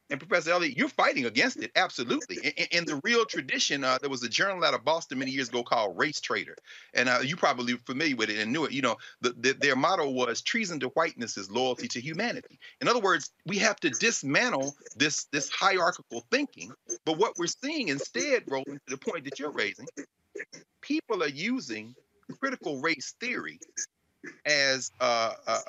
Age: 40-59